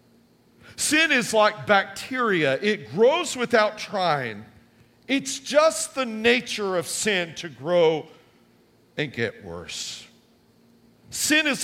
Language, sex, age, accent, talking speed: English, male, 50-69, American, 110 wpm